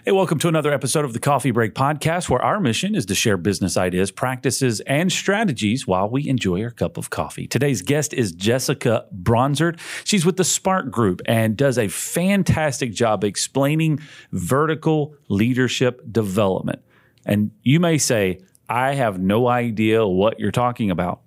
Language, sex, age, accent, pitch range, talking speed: English, male, 40-59, American, 105-140 Hz, 165 wpm